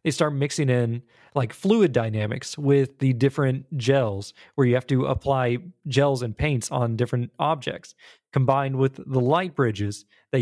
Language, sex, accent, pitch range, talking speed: English, male, American, 120-155 Hz, 160 wpm